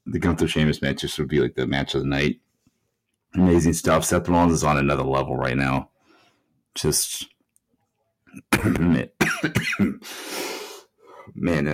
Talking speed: 125 wpm